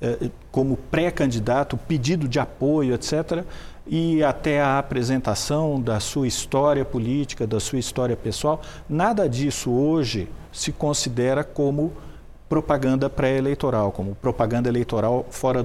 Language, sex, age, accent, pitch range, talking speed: English, male, 50-69, Brazilian, 110-150 Hz, 115 wpm